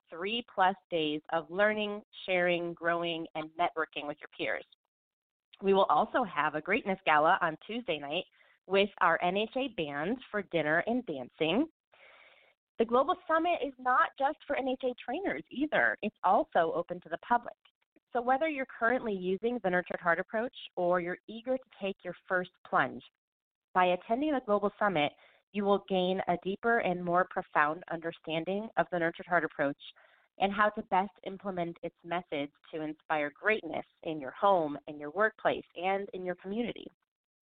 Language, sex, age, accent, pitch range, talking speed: English, female, 30-49, American, 170-240 Hz, 165 wpm